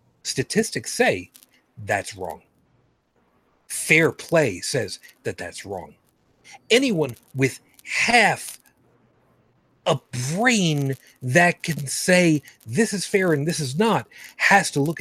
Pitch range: 130-185 Hz